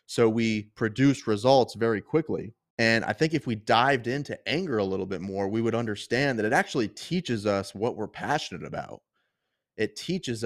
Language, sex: English, male